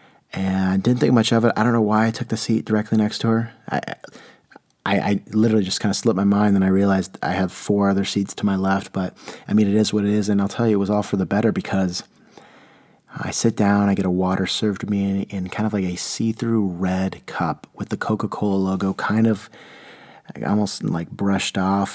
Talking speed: 240 wpm